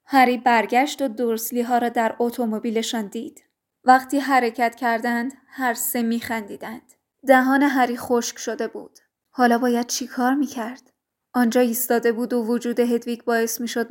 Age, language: 20-39, Persian